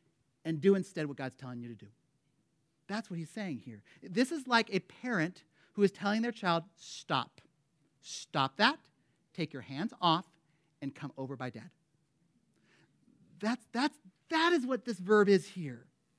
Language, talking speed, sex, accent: English, 165 wpm, male, American